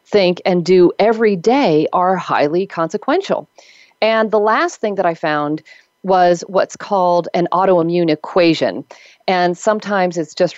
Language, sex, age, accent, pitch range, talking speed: English, female, 40-59, American, 155-190 Hz, 140 wpm